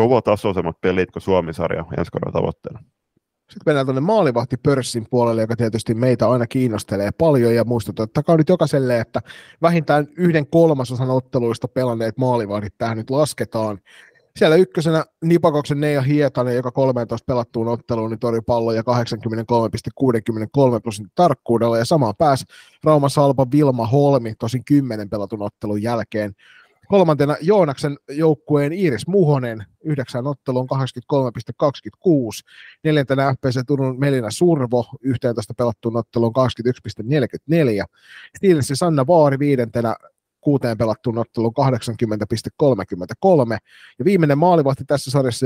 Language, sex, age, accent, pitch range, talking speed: Finnish, male, 30-49, native, 115-145 Hz, 115 wpm